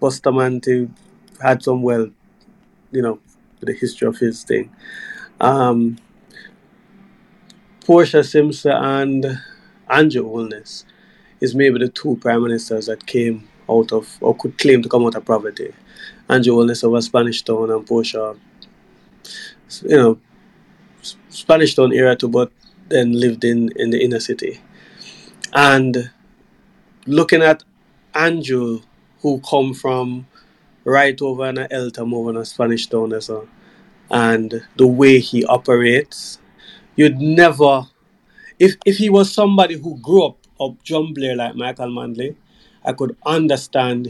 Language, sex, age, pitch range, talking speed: English, male, 30-49, 120-165 Hz, 130 wpm